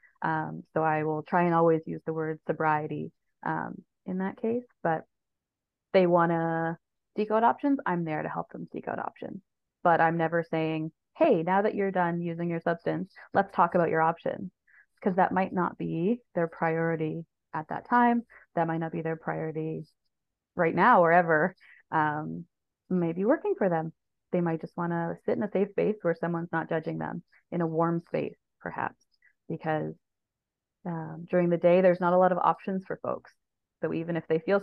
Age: 20-39